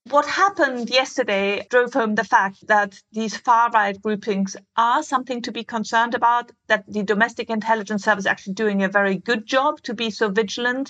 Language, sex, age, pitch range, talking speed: English, female, 50-69, 195-235 Hz, 180 wpm